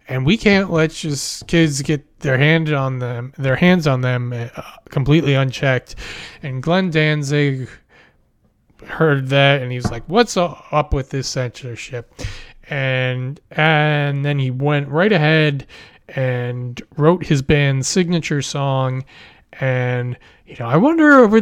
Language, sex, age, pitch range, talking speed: English, male, 20-39, 125-155 Hz, 140 wpm